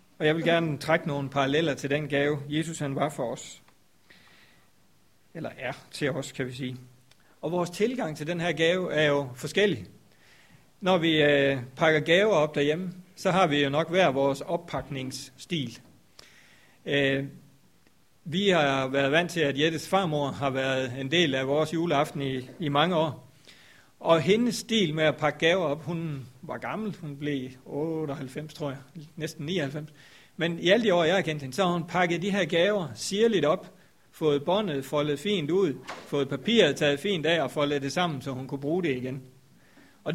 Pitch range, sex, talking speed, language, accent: 140-175 Hz, male, 180 wpm, Danish, native